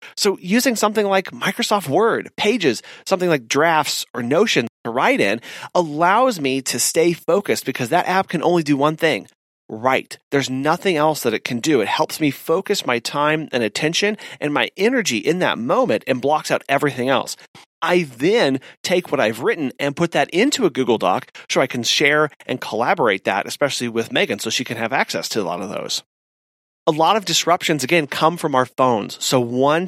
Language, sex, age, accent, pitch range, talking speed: English, male, 30-49, American, 130-170 Hz, 200 wpm